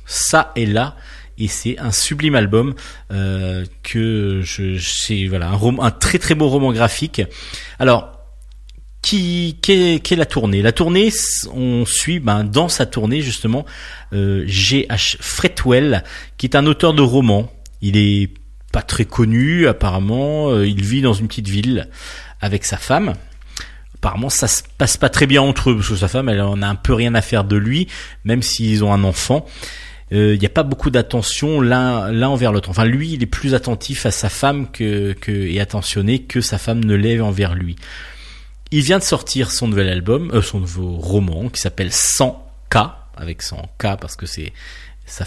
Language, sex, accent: French, male, French